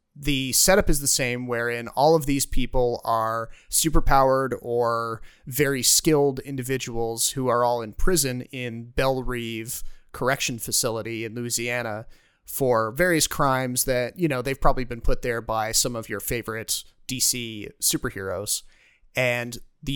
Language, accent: English, American